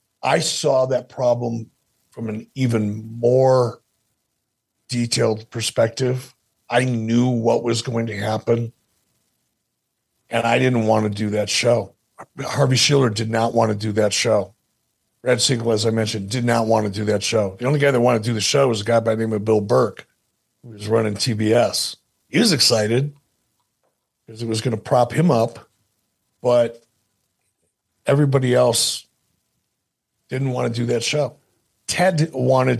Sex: male